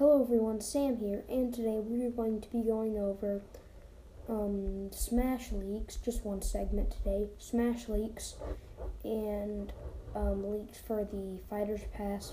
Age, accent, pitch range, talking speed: 10-29, American, 170-230 Hz, 140 wpm